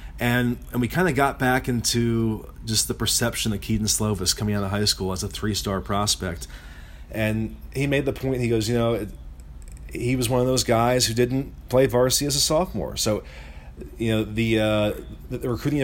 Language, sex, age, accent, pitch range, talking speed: English, male, 30-49, American, 105-125 Hz, 205 wpm